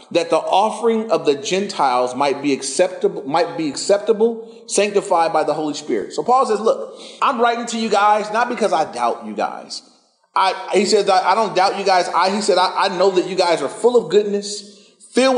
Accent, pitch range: American, 170-225 Hz